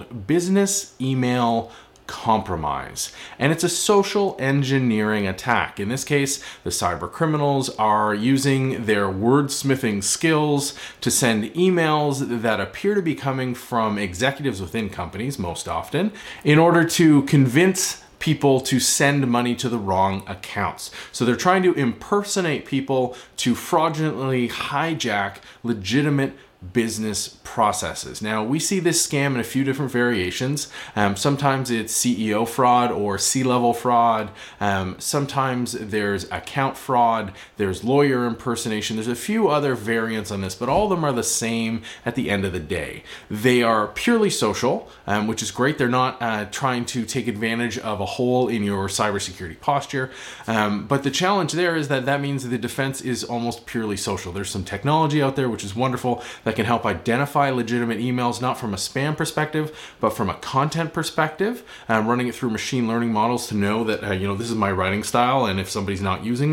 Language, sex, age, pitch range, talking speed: English, male, 30-49, 110-140 Hz, 170 wpm